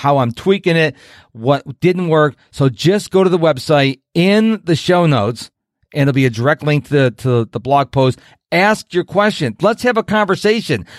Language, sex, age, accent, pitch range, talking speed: English, male, 40-59, American, 130-195 Hz, 195 wpm